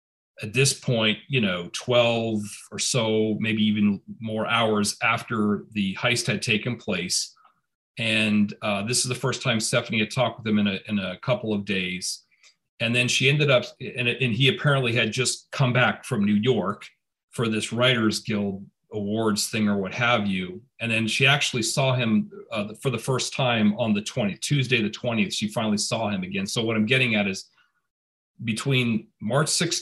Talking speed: 185 wpm